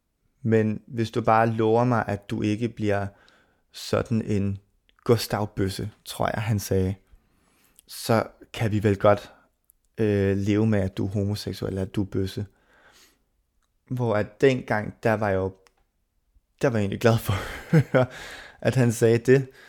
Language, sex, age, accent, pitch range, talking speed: Danish, male, 20-39, native, 100-120 Hz, 160 wpm